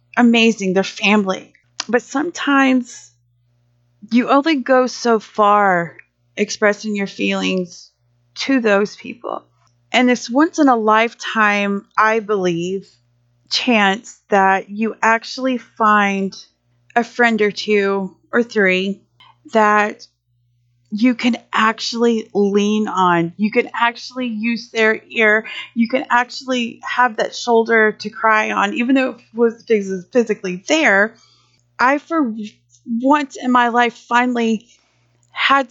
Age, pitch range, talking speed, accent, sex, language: 30-49, 190-245 Hz, 120 wpm, American, female, English